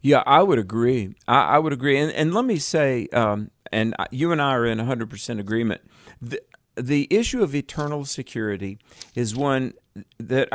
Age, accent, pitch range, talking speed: 50-69, American, 115-145 Hz, 170 wpm